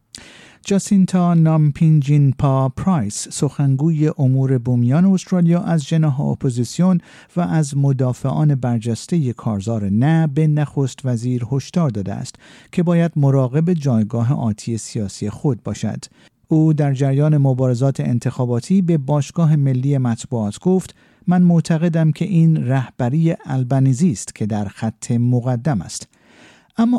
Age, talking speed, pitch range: 50-69, 120 wpm, 125-165 Hz